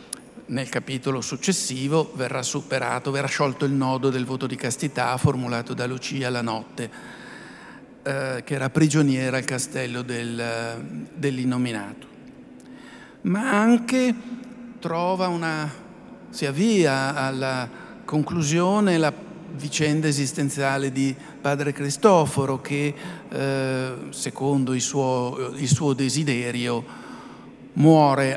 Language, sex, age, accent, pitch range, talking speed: Italian, male, 50-69, native, 130-165 Hz, 105 wpm